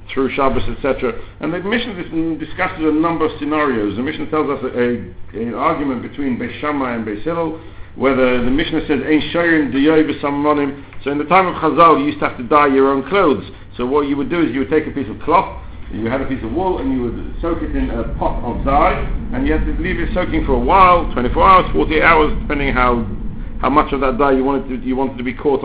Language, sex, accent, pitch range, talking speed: English, male, British, 110-155 Hz, 235 wpm